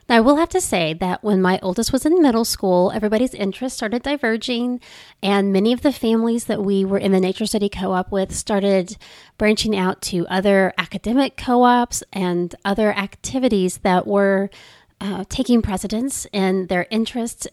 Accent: American